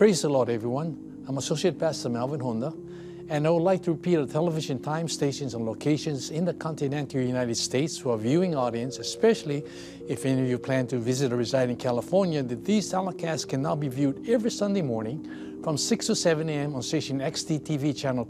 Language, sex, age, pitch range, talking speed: English, male, 60-79, 130-170 Hz, 200 wpm